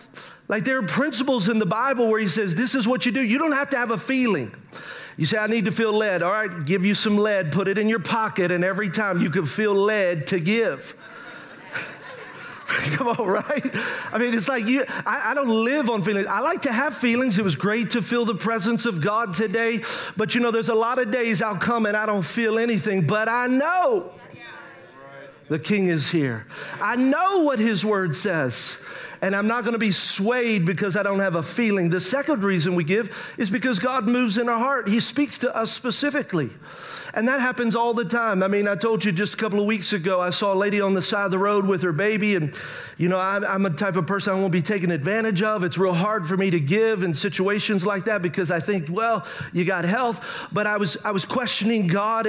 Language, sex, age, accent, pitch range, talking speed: English, male, 40-59, American, 195-235 Hz, 235 wpm